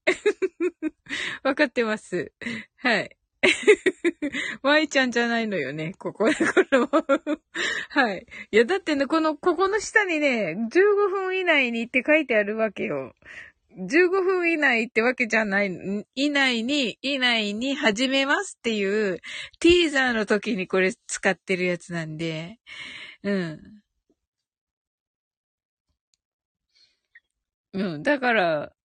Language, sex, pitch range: Japanese, female, 200-330 Hz